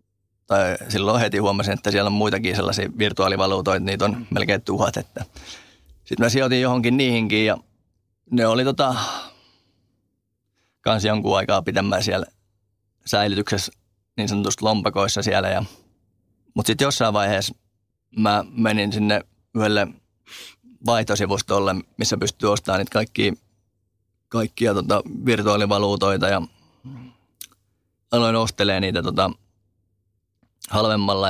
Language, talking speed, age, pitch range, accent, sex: Finnish, 110 wpm, 20-39, 100-110 Hz, native, male